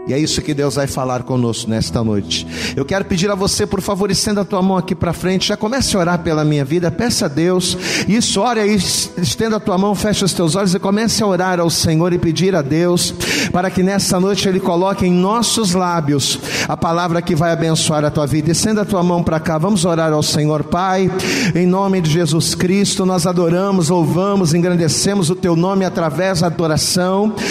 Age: 40-59